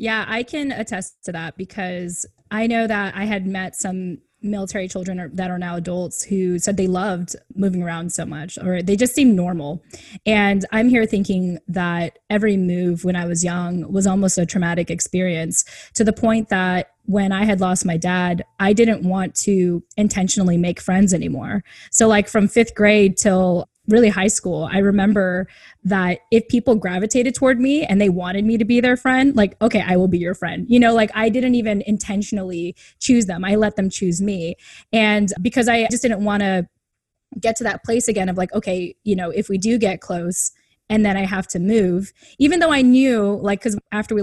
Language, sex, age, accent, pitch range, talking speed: English, female, 10-29, American, 180-220 Hz, 200 wpm